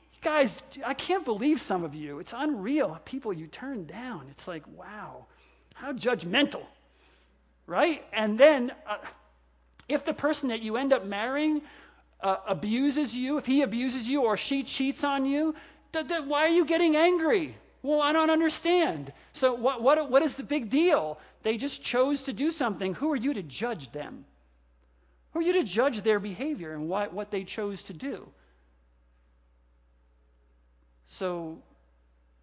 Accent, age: American, 50-69